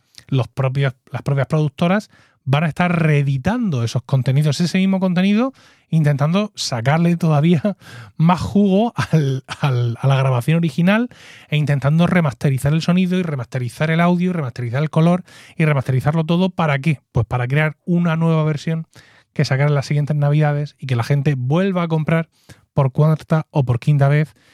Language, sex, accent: Spanish, male, Spanish